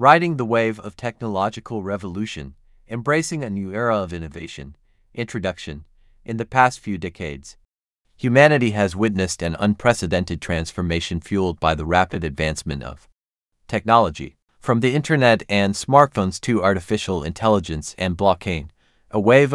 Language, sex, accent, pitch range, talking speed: English, male, American, 85-110 Hz, 130 wpm